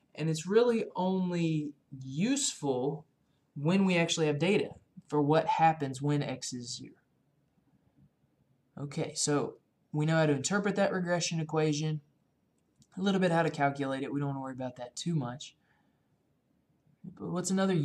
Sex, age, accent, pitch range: male, 20-39, American, 135-165 Hz